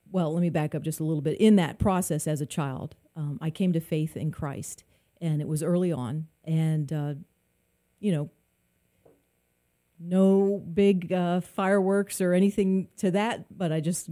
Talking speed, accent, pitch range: 180 wpm, American, 155-200 Hz